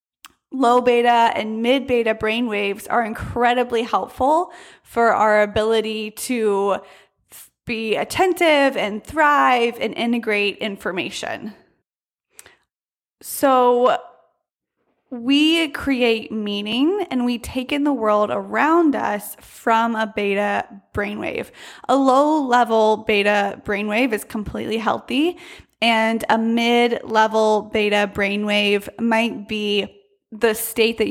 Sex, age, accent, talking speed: female, 20-39, American, 100 wpm